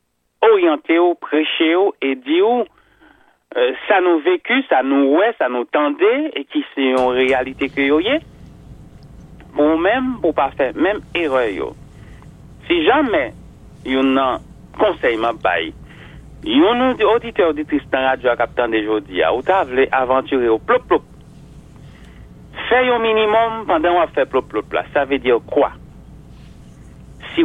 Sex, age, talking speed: male, 60-79, 155 wpm